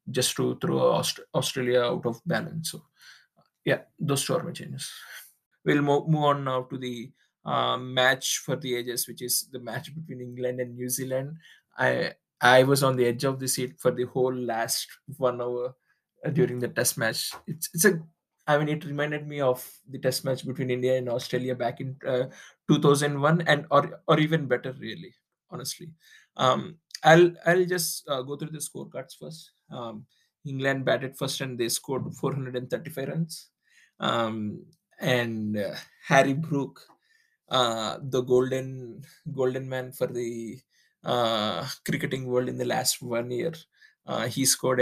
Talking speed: 165 wpm